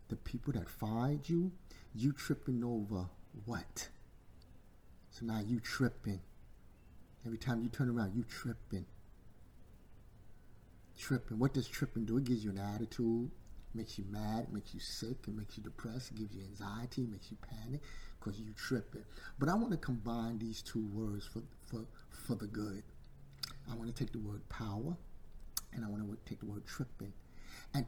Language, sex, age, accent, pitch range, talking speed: English, male, 50-69, American, 100-125 Hz, 170 wpm